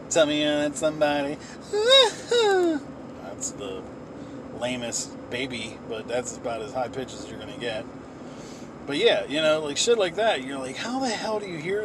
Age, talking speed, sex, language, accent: 30-49, 170 wpm, male, English, American